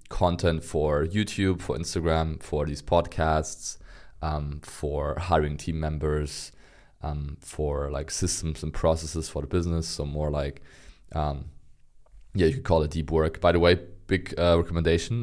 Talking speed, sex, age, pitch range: 155 wpm, male, 20-39, 75-85 Hz